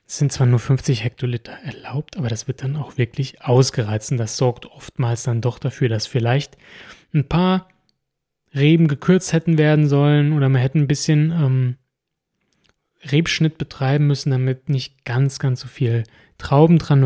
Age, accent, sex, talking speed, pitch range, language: 30-49, German, male, 160 wpm, 120-145 Hz, German